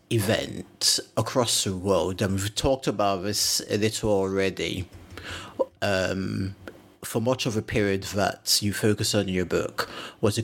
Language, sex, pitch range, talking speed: English, male, 95-115 Hz, 155 wpm